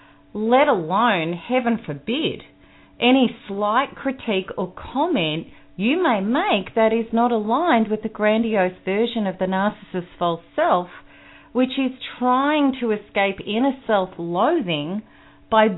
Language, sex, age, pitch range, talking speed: English, female, 40-59, 165-240 Hz, 125 wpm